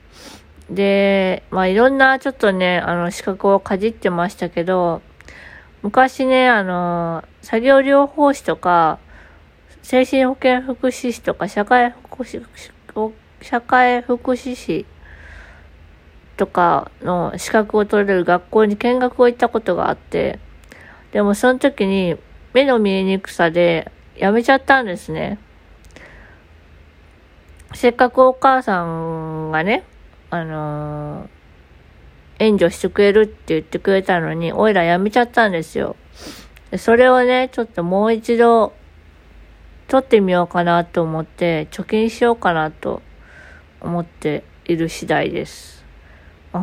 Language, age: Japanese, 20-39